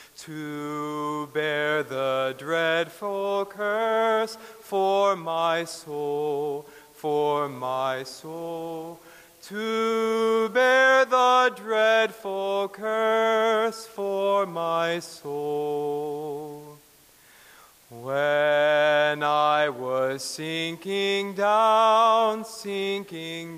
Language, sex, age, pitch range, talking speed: English, male, 30-49, 150-220 Hz, 65 wpm